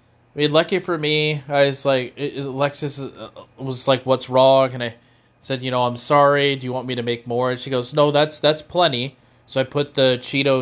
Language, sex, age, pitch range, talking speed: English, male, 20-39, 120-145 Hz, 220 wpm